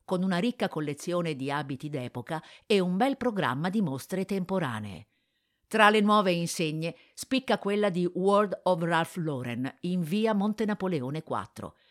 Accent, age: native, 50-69